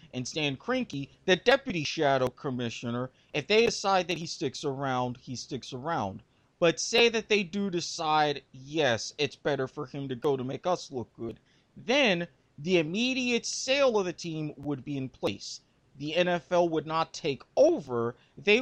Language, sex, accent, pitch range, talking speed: English, male, American, 135-185 Hz, 170 wpm